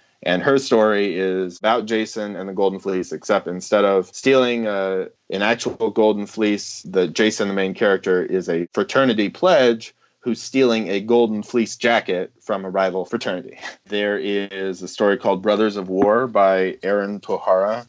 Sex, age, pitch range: male, 20-39, 90-110 Hz